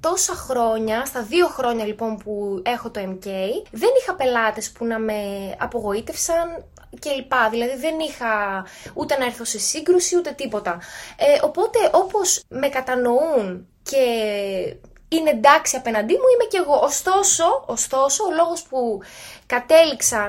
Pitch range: 215-345 Hz